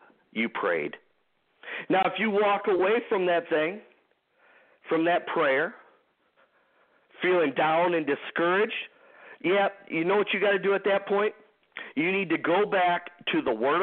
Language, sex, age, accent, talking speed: English, male, 50-69, American, 155 wpm